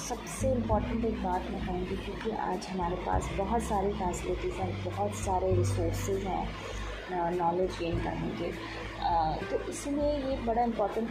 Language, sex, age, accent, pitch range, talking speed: Hindi, female, 20-39, native, 155-205 Hz, 145 wpm